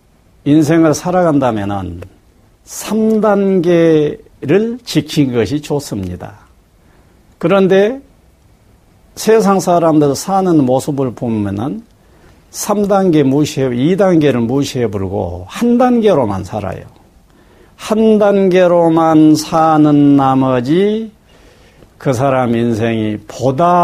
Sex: male